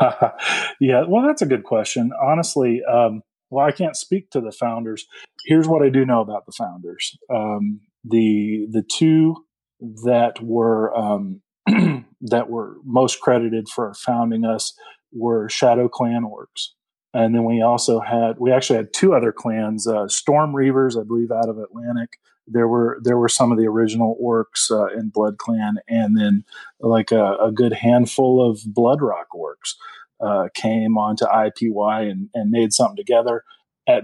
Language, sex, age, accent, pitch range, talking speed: English, male, 40-59, American, 110-130 Hz, 165 wpm